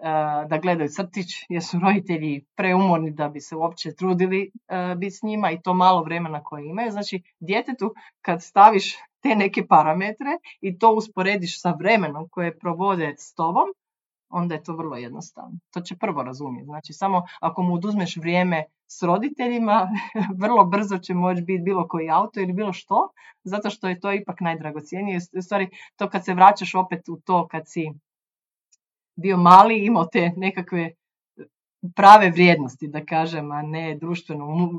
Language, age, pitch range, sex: Croatian, 30-49, 160-195 Hz, female